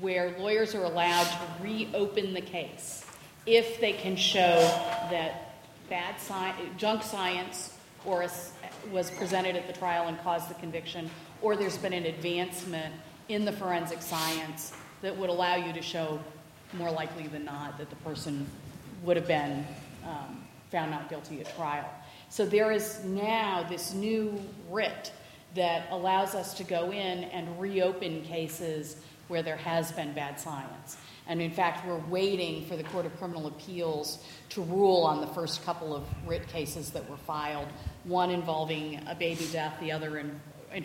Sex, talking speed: female, 165 wpm